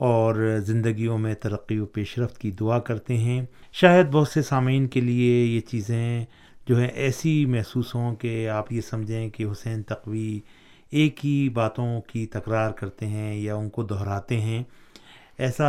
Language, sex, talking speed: Urdu, male, 165 wpm